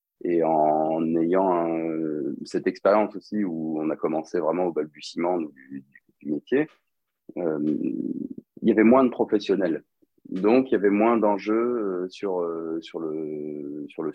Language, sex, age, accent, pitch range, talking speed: French, male, 30-49, French, 80-110 Hz, 150 wpm